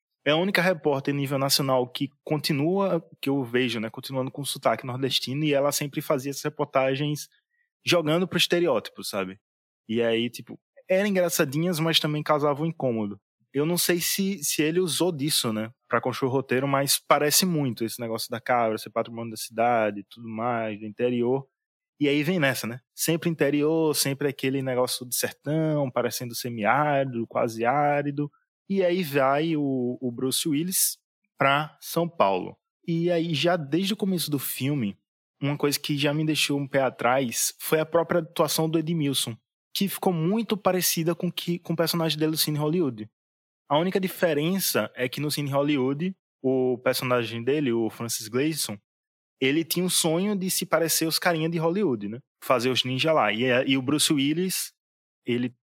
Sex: male